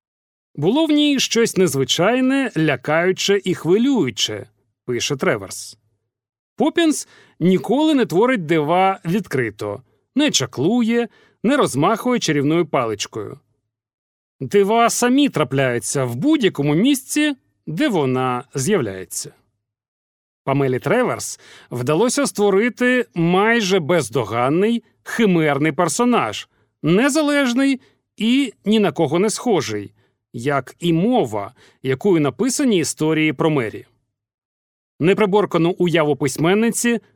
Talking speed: 95 wpm